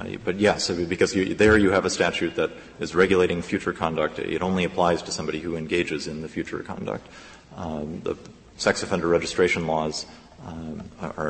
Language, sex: English, male